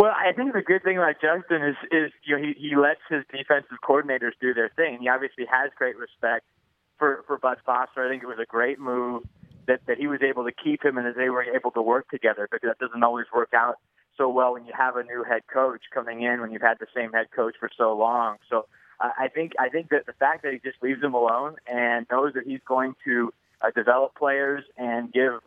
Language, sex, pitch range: English, male, 125-140 Hz